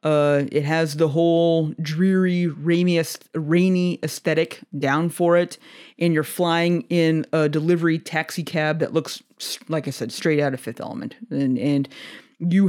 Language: English